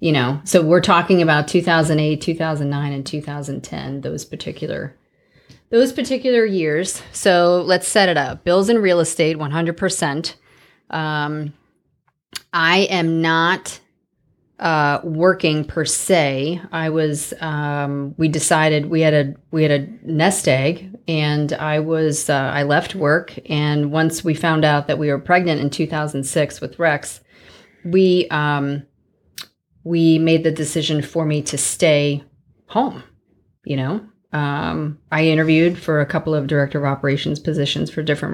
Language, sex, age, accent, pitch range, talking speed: English, female, 30-49, American, 145-165 Hz, 145 wpm